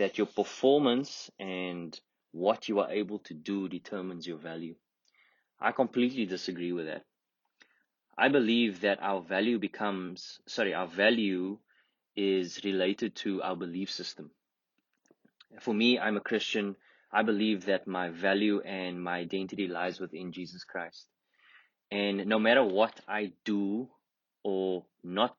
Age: 20-39